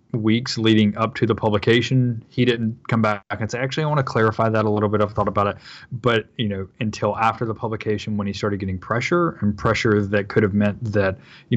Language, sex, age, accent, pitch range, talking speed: English, male, 20-39, American, 100-120 Hz, 235 wpm